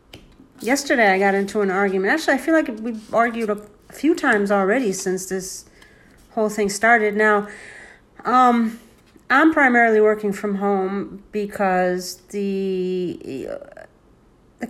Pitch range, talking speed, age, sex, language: 195-235 Hz, 125 wpm, 40-59, female, English